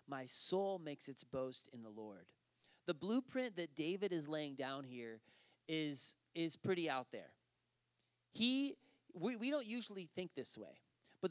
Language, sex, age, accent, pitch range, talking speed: English, male, 30-49, American, 150-210 Hz, 160 wpm